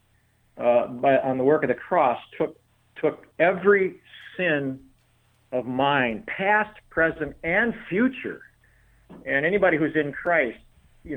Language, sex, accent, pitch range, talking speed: English, male, American, 120-165 Hz, 130 wpm